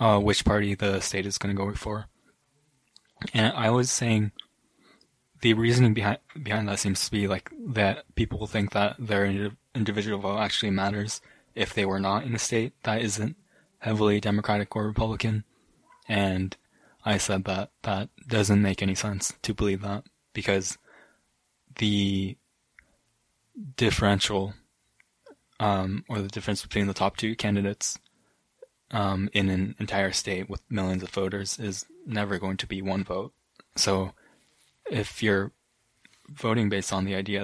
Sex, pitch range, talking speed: male, 95-110 Hz, 150 wpm